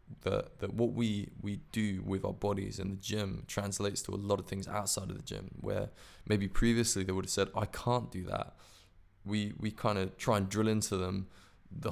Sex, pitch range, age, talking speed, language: male, 95-110 Hz, 20-39, 215 wpm, English